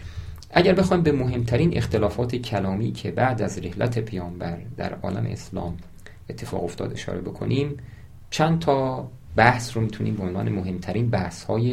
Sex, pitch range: male, 90-115 Hz